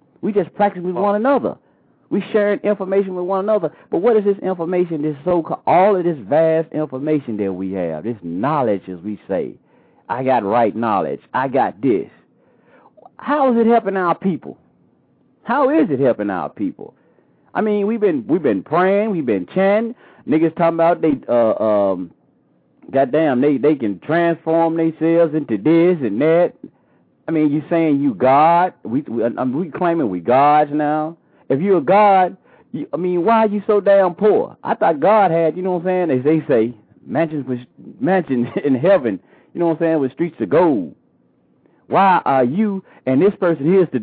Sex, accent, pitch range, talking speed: male, American, 150-200 Hz, 190 wpm